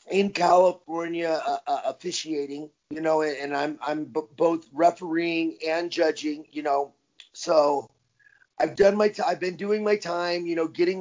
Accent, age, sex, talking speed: American, 30-49, male, 165 wpm